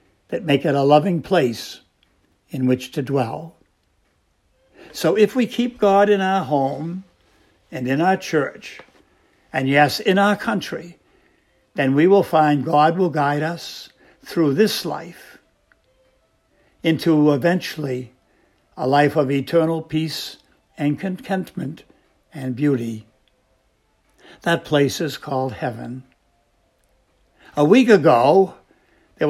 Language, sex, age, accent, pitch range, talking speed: English, male, 60-79, American, 120-165 Hz, 120 wpm